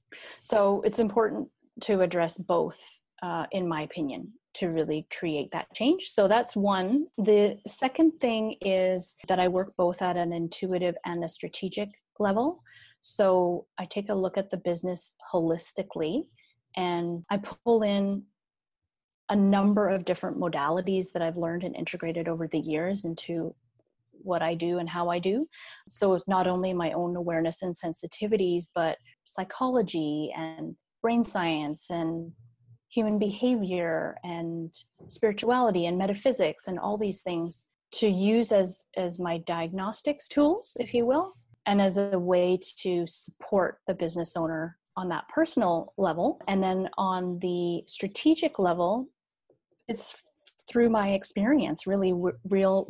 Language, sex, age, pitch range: English, female, 30-49, 170-210 Hz